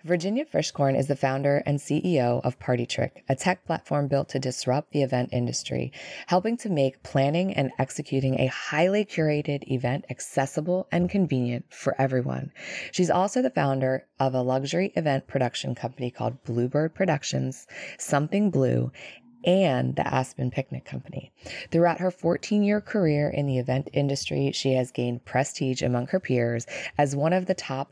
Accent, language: American, English